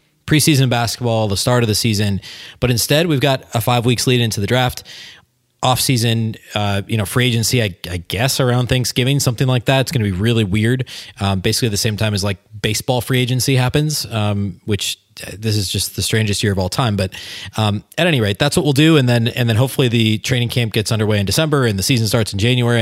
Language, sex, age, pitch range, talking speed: English, male, 20-39, 100-125 Hz, 230 wpm